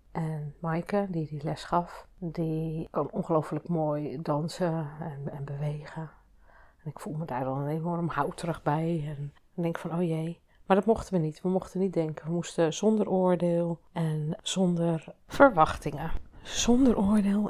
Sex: female